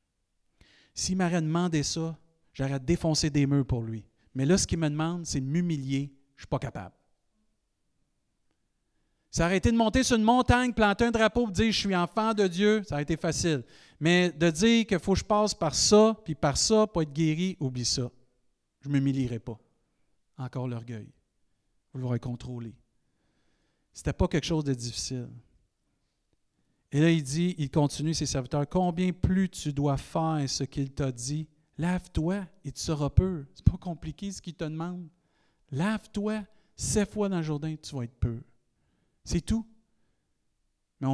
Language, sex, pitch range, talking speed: French, male, 125-175 Hz, 180 wpm